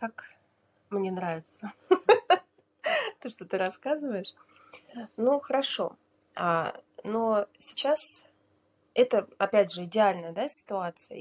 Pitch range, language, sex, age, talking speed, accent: 180-225 Hz, Russian, female, 20-39, 85 wpm, native